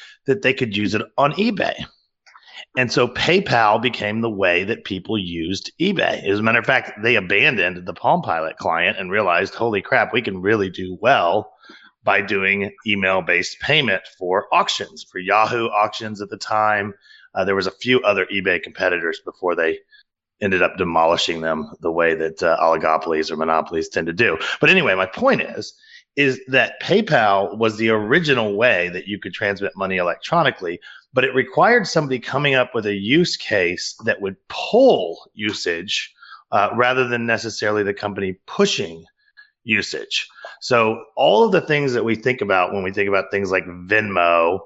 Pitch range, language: 95-135 Hz, English